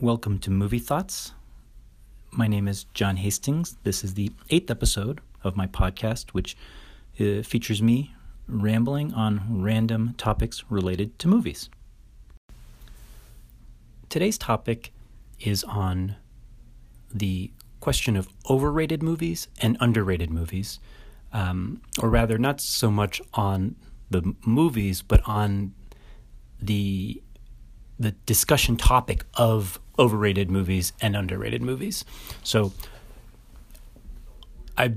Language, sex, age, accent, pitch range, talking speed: English, male, 30-49, American, 100-115 Hz, 110 wpm